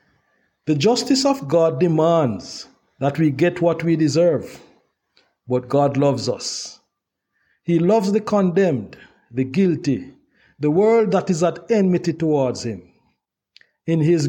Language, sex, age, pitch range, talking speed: English, male, 50-69, 140-190 Hz, 130 wpm